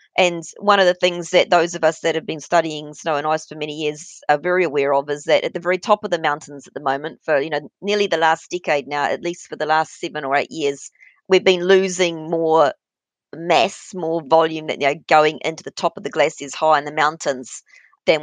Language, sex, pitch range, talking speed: English, female, 155-180 Hz, 245 wpm